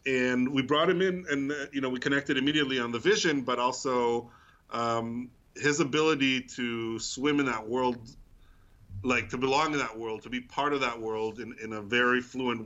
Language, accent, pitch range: English, American, 110-130 Hz